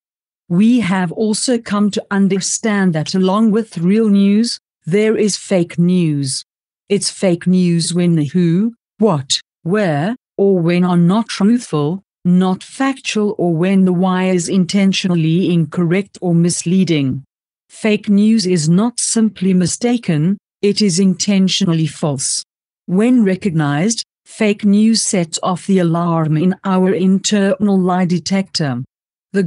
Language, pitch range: English, 170-205 Hz